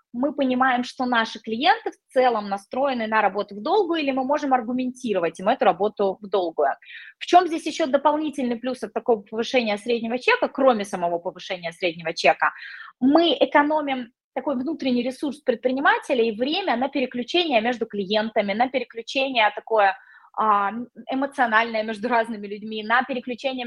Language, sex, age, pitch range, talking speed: Russian, female, 20-39, 215-275 Hz, 145 wpm